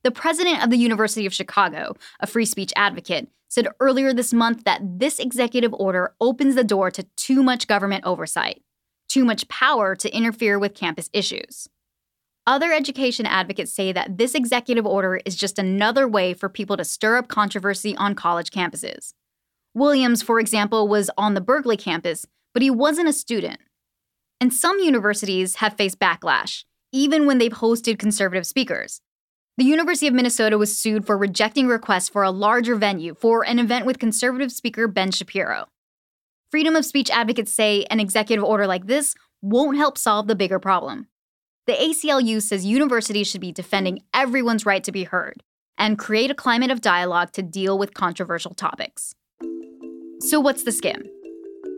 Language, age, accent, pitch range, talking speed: English, 10-29, American, 195-255 Hz, 170 wpm